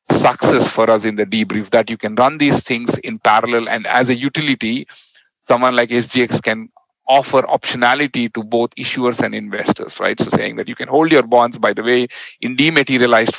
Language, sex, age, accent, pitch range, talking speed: English, male, 40-59, Indian, 120-145 Hz, 195 wpm